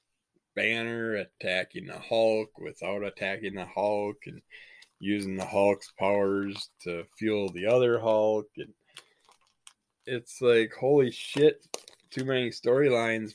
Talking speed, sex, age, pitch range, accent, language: 115 wpm, male, 20-39, 95-120 Hz, American, English